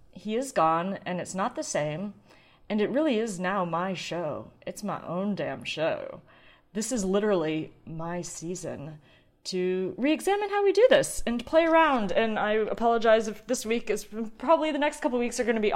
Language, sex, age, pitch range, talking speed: English, female, 30-49, 180-245 Hz, 190 wpm